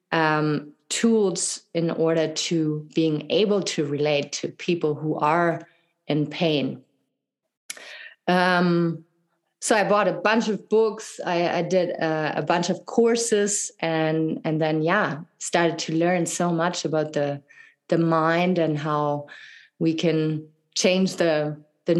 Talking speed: 140 wpm